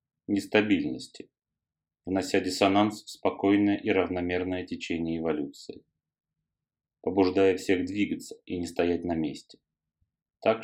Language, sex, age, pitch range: Russian, male, 30-49, 85-105 Hz